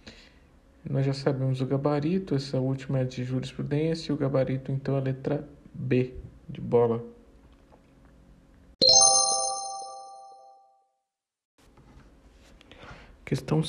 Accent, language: Brazilian, Portuguese